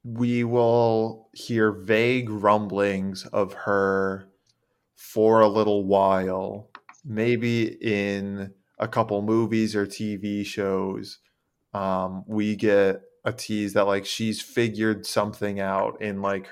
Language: English